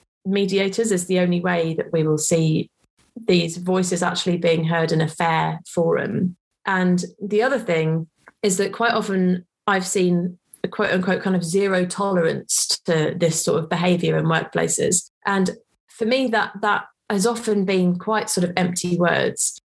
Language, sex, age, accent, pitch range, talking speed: English, female, 30-49, British, 175-205 Hz, 165 wpm